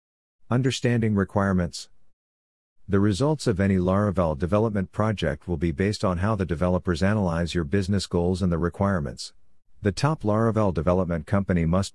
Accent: American